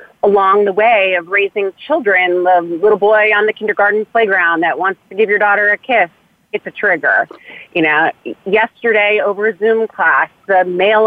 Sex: female